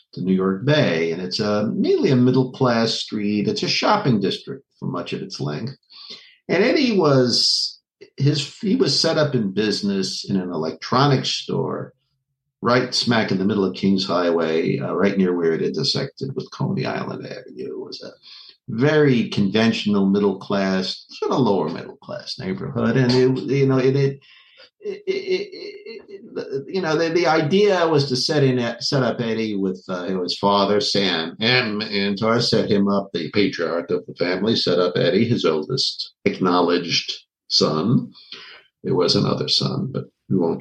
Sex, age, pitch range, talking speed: male, 50-69, 95-145 Hz, 170 wpm